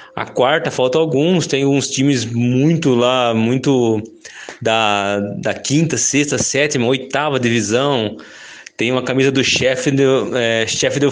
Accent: Brazilian